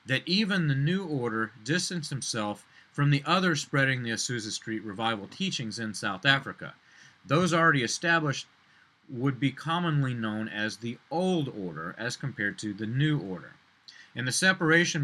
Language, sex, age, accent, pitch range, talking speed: English, male, 30-49, American, 120-165 Hz, 155 wpm